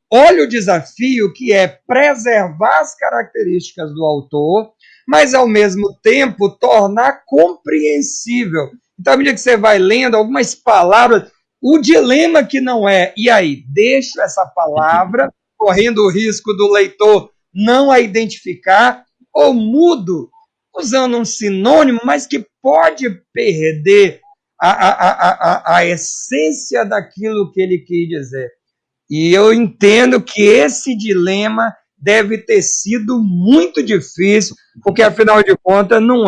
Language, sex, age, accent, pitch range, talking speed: Portuguese, male, 50-69, Brazilian, 180-240 Hz, 130 wpm